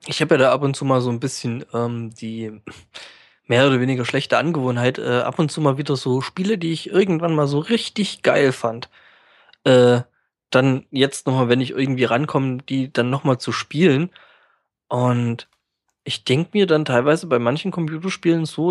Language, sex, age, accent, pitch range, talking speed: German, male, 20-39, German, 125-155 Hz, 190 wpm